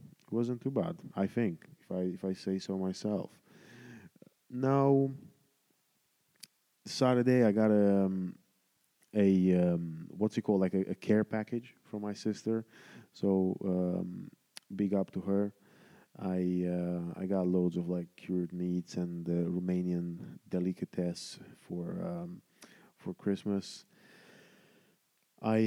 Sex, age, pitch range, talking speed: male, 20-39, 90-100 Hz, 130 wpm